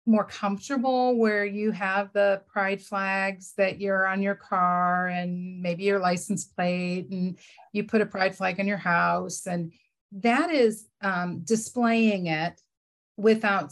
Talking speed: 150 wpm